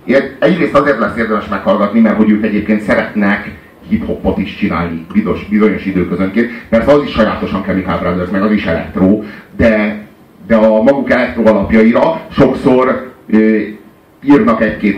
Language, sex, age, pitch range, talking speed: Hungarian, male, 40-59, 100-135 Hz, 150 wpm